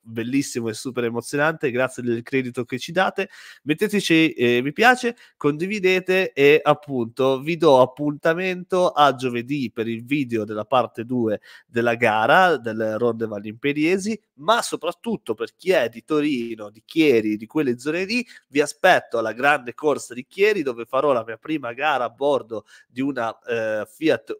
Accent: native